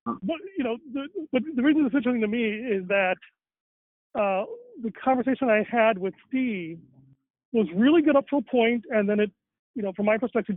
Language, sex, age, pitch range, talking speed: English, male, 40-59, 185-250 Hz, 200 wpm